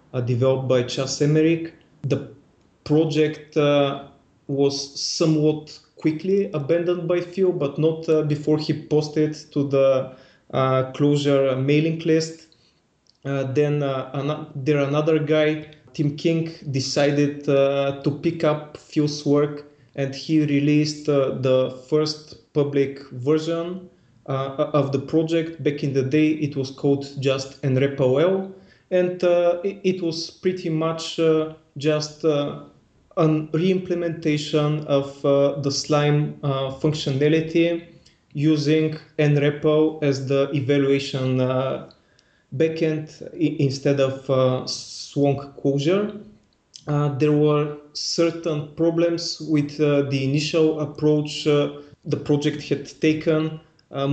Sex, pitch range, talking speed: male, 140-160 Hz, 120 wpm